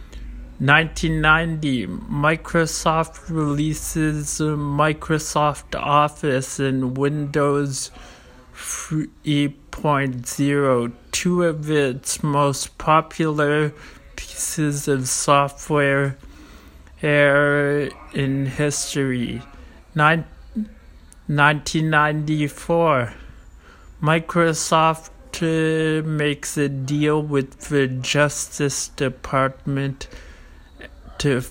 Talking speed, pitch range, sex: 55 wpm, 135-155 Hz, male